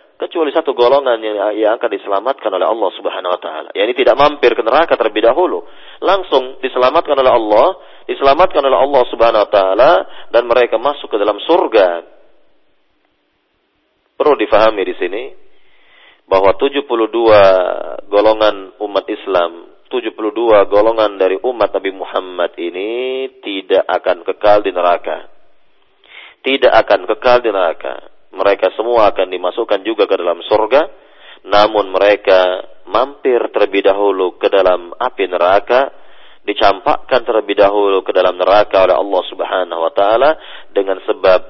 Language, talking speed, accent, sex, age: Indonesian, 130 wpm, native, male, 40-59